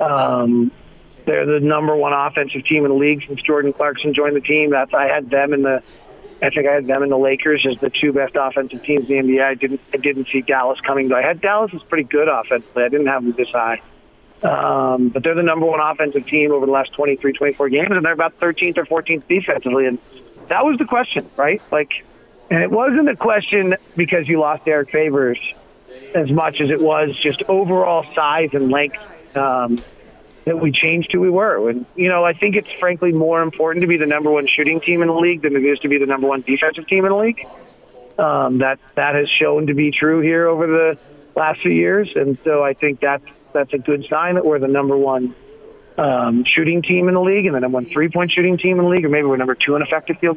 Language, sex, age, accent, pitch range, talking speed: English, male, 40-59, American, 135-170 Hz, 240 wpm